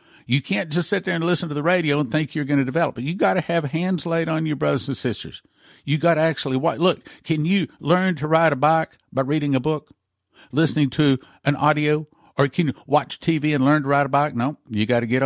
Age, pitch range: 50-69, 125-160 Hz